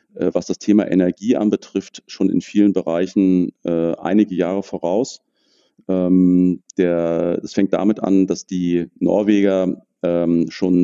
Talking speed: 125 wpm